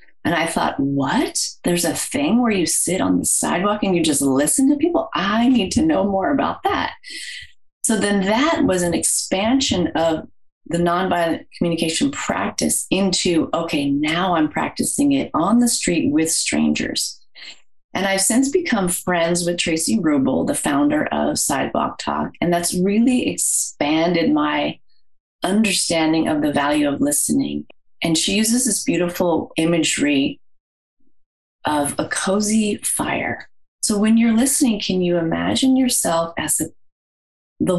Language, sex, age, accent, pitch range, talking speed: English, female, 30-49, American, 165-260 Hz, 145 wpm